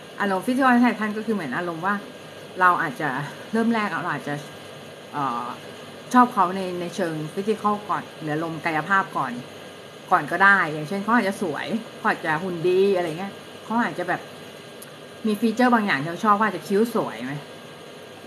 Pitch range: 180-225 Hz